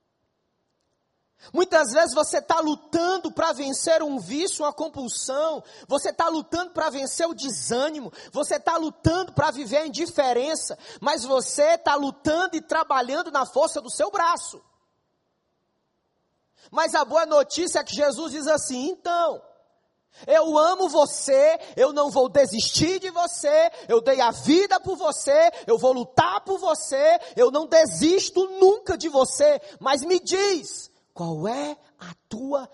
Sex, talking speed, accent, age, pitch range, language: male, 145 wpm, Brazilian, 20-39, 265-320 Hz, Portuguese